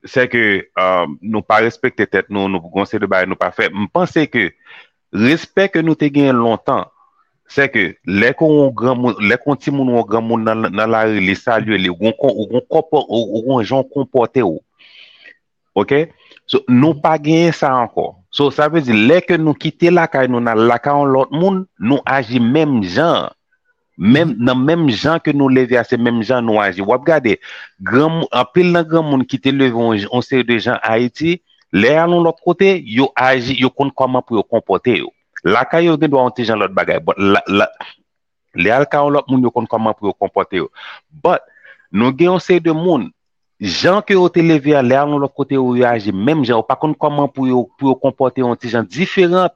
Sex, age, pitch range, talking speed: male, 40-59, 120-155 Hz, 165 wpm